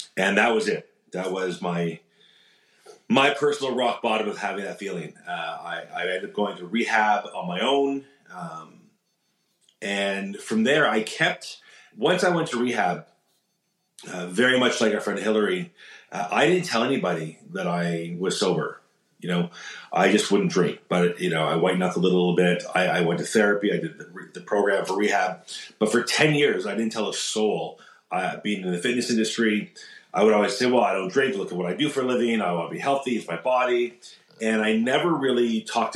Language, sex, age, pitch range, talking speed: English, male, 30-49, 90-120 Hz, 205 wpm